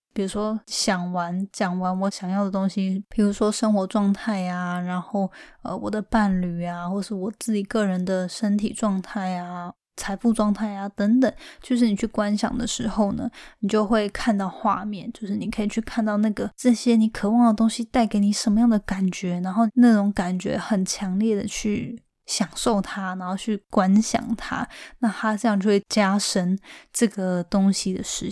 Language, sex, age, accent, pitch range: Chinese, female, 10-29, native, 195-230 Hz